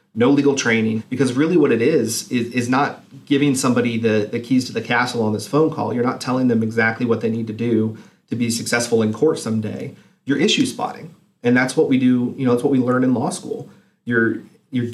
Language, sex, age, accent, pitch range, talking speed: English, male, 40-59, American, 115-135 Hz, 235 wpm